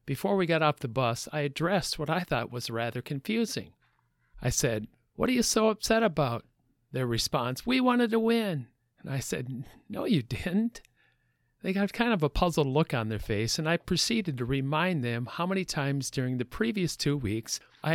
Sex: male